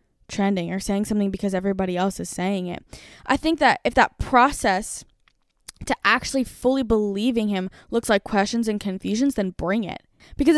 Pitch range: 205-265 Hz